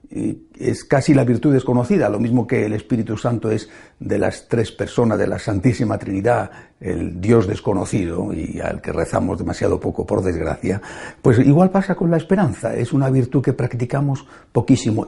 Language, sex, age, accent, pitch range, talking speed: Spanish, male, 60-79, Spanish, 110-145 Hz, 170 wpm